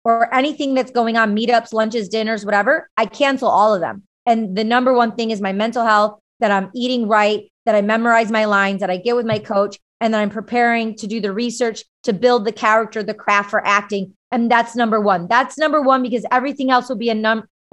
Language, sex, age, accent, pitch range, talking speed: English, female, 30-49, American, 210-245 Hz, 230 wpm